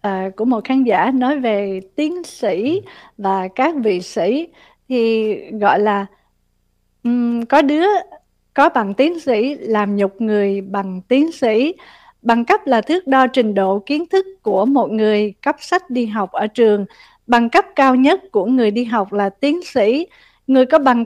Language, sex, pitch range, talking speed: Vietnamese, female, 210-285 Hz, 170 wpm